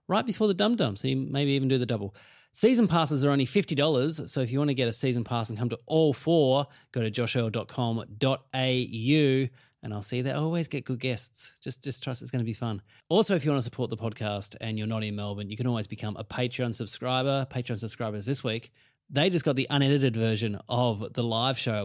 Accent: Australian